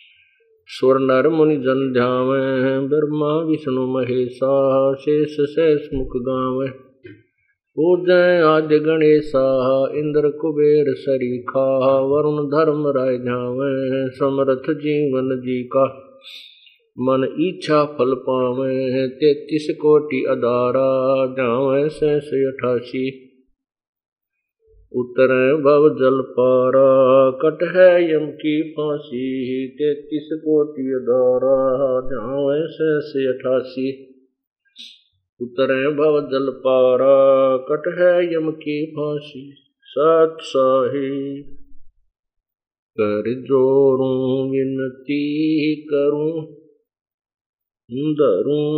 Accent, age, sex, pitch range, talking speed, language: native, 50-69, male, 130-150 Hz, 75 wpm, Hindi